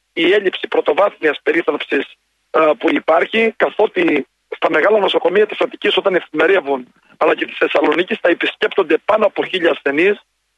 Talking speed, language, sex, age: 140 wpm, Greek, male, 40-59